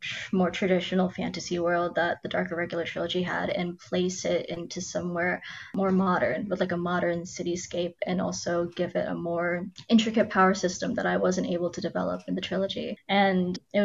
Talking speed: 180 wpm